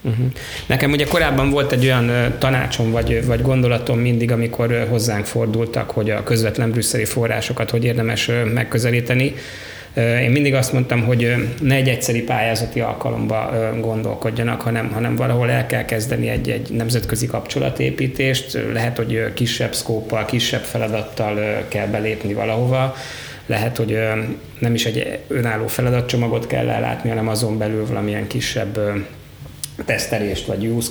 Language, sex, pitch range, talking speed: Hungarian, male, 110-125 Hz, 135 wpm